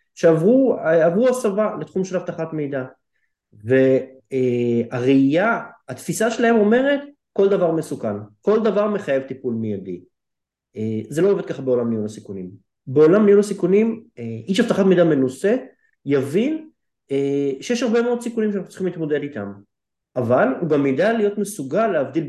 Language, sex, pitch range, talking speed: Hebrew, male, 135-210 Hz, 125 wpm